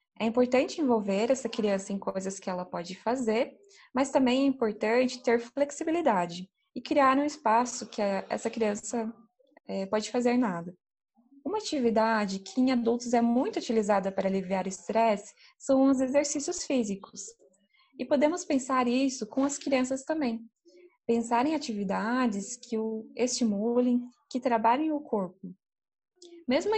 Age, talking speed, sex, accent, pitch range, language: 20-39, 140 wpm, female, Brazilian, 215-275 Hz, Portuguese